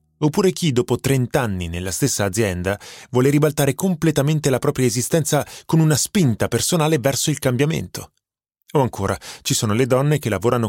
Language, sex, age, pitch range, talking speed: Italian, male, 30-49, 115-155 Hz, 165 wpm